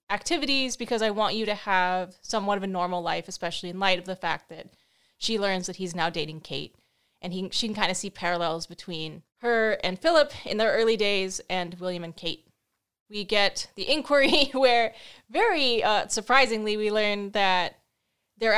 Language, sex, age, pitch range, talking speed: English, female, 20-39, 185-260 Hz, 185 wpm